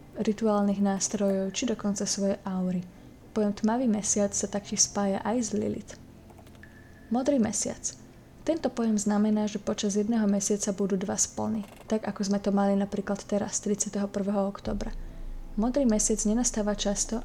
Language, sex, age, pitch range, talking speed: Slovak, female, 20-39, 200-220 Hz, 140 wpm